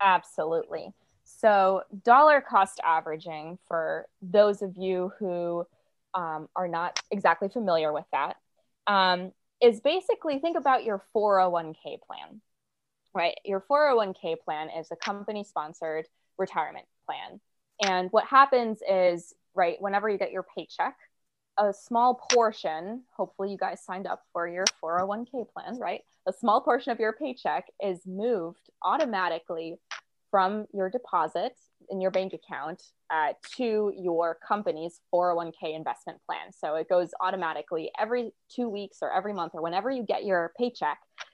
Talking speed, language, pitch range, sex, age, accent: 140 wpm, English, 170-220 Hz, female, 20-39, American